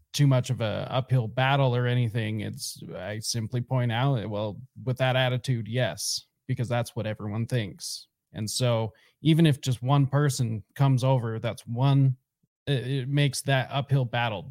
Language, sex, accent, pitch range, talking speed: English, male, American, 115-135 Hz, 160 wpm